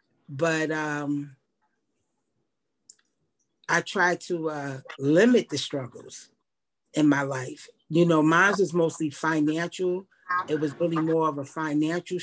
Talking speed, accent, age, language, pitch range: 125 wpm, American, 40-59, English, 150-180 Hz